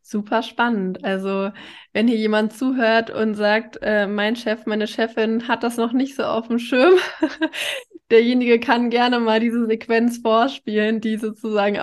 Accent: German